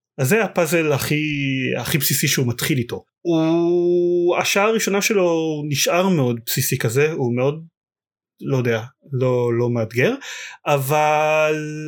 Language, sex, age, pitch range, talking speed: Hebrew, male, 30-49, 125-165 Hz, 125 wpm